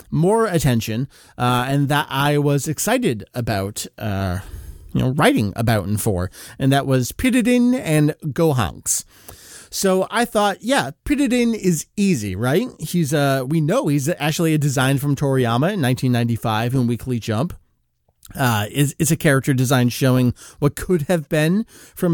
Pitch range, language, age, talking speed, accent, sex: 120-175 Hz, English, 30-49, 155 wpm, American, male